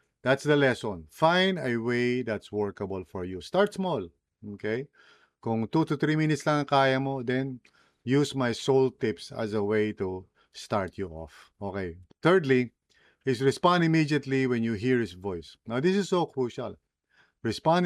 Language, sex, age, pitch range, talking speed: English, male, 50-69, 110-145 Hz, 165 wpm